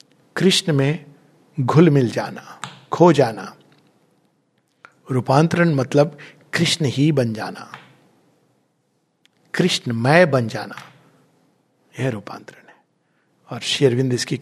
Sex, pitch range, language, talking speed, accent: male, 135-180 Hz, Hindi, 95 wpm, native